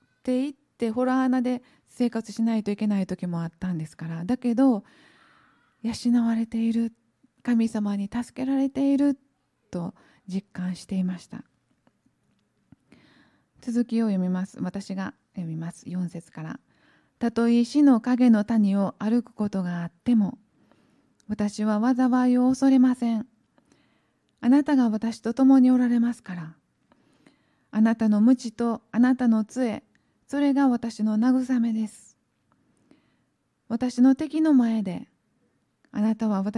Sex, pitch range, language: female, 210-250 Hz, Japanese